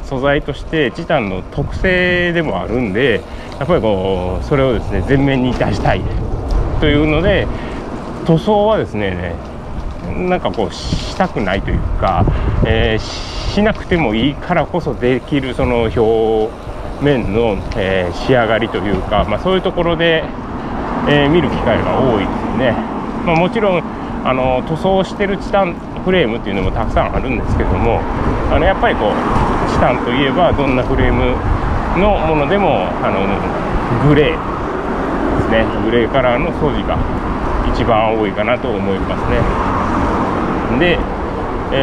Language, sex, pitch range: Japanese, male, 105-155 Hz